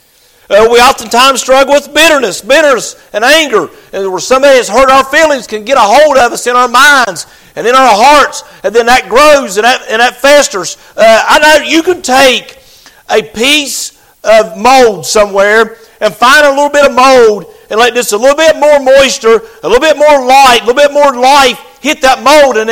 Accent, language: American, English